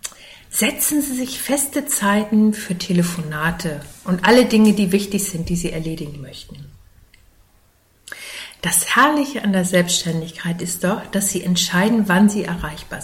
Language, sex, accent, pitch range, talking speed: German, female, German, 170-230 Hz, 140 wpm